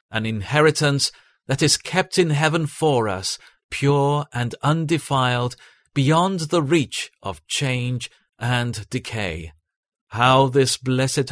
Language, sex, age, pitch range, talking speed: English, male, 40-59, 110-150 Hz, 115 wpm